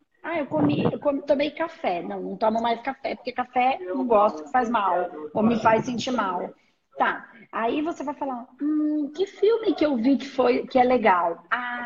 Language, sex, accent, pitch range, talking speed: Portuguese, female, Brazilian, 235-310 Hz, 205 wpm